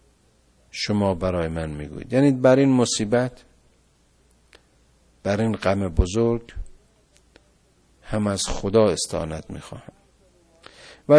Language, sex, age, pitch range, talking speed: Persian, male, 50-69, 85-120 Hz, 95 wpm